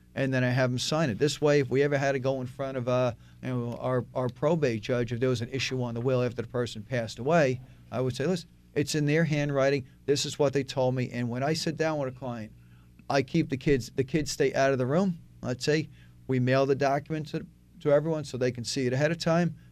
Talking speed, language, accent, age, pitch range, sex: 270 wpm, English, American, 40-59, 120-140 Hz, male